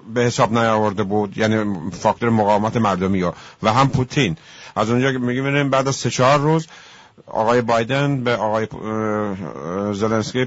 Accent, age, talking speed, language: Turkish, 50-69, 155 wpm, English